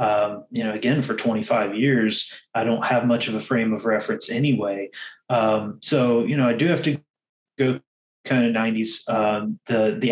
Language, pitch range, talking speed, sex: English, 110-135 Hz, 190 wpm, male